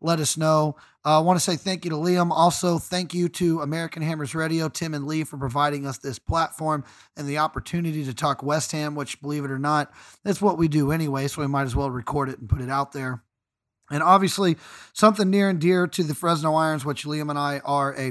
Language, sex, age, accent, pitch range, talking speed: English, male, 30-49, American, 140-165 Hz, 240 wpm